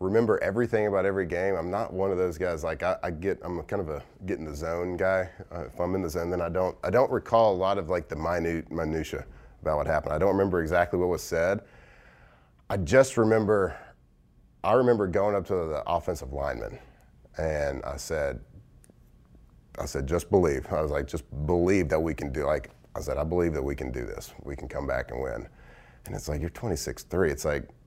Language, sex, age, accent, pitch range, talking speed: English, male, 30-49, American, 75-100 Hz, 225 wpm